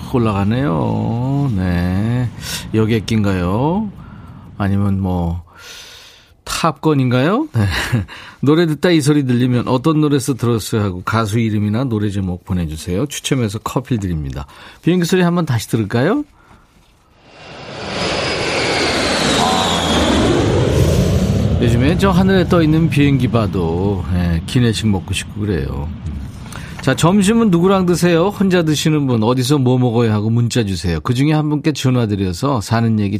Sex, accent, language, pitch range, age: male, native, Korean, 100-150 Hz, 40-59